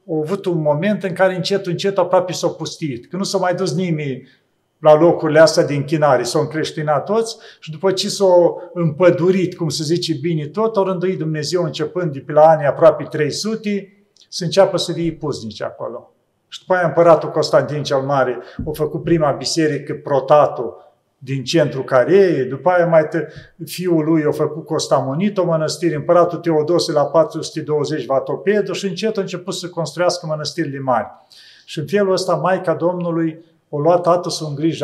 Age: 40-59